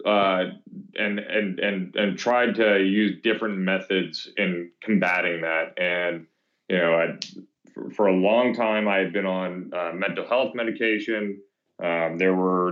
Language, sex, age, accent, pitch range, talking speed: English, male, 30-49, American, 90-105 Hz, 155 wpm